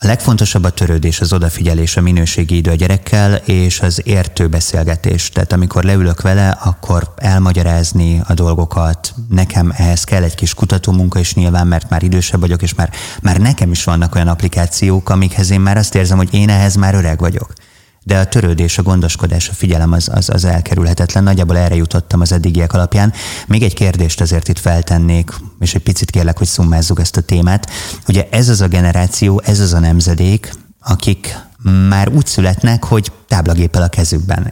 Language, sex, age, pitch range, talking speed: Hungarian, male, 30-49, 85-100 Hz, 175 wpm